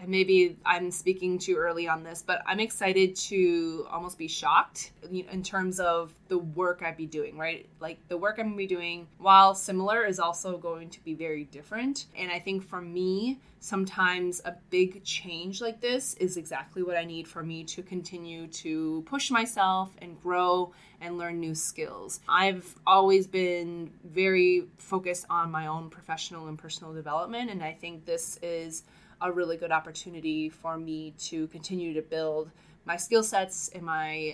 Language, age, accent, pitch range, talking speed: English, 20-39, American, 165-190 Hz, 175 wpm